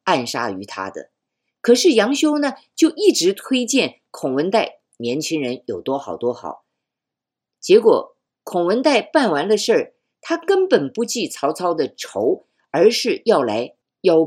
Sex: female